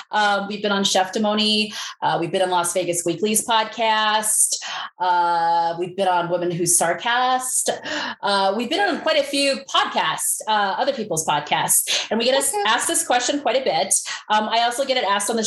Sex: female